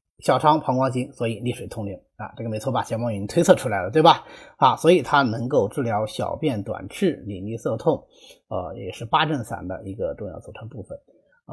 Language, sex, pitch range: Chinese, male, 105-160 Hz